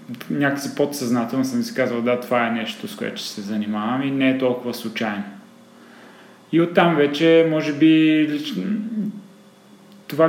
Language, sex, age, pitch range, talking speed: Bulgarian, male, 20-39, 115-140 Hz, 150 wpm